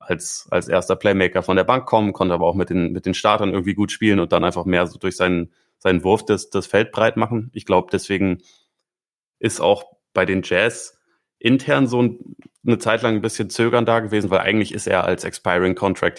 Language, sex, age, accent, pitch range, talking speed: German, male, 30-49, German, 90-105 Hz, 220 wpm